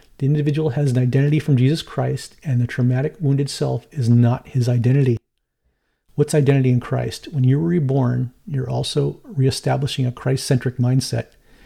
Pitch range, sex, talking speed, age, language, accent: 125-145 Hz, male, 155 wpm, 40-59, English, American